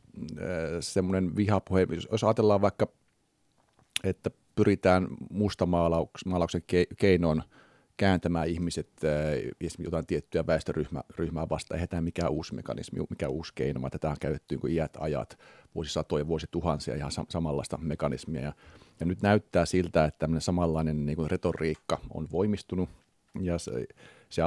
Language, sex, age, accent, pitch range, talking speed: Finnish, male, 40-59, native, 80-95 Hz, 130 wpm